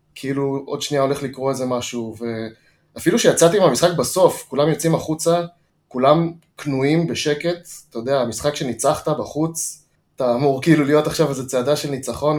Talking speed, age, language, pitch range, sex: 150 wpm, 20-39, Hebrew, 120-150 Hz, male